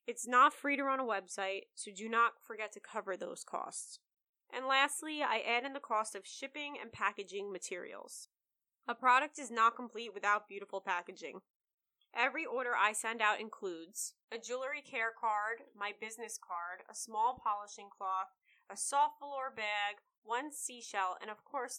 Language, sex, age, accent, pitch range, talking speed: English, female, 20-39, American, 200-265 Hz, 170 wpm